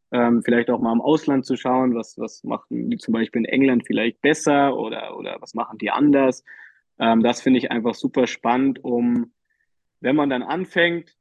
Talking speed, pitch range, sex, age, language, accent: 195 wpm, 120-135 Hz, male, 20-39, German, German